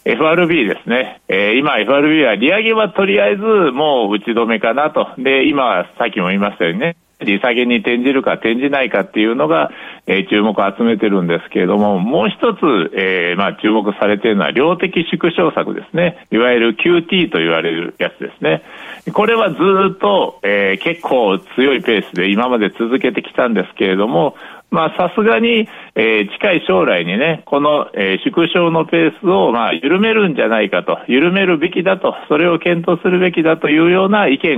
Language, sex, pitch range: Japanese, male, 115-180 Hz